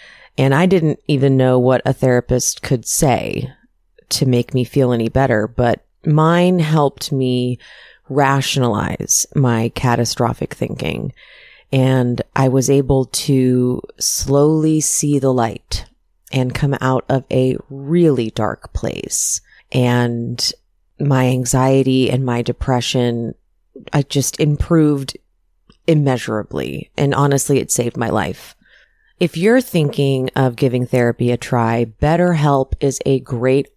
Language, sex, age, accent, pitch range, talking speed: English, female, 30-49, American, 125-150 Hz, 125 wpm